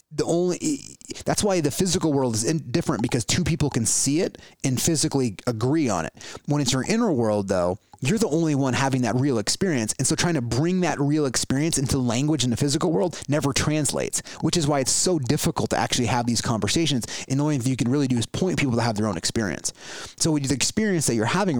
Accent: American